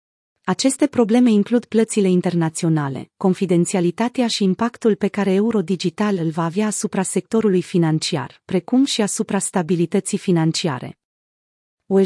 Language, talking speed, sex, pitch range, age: Romanian, 120 wpm, female, 175-220 Hz, 30-49